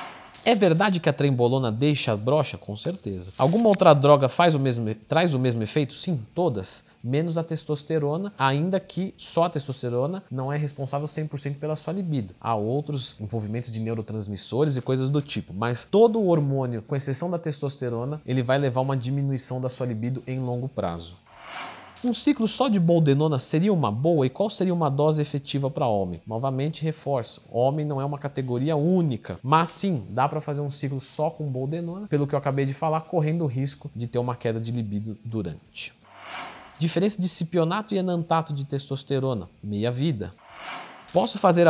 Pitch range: 125-165 Hz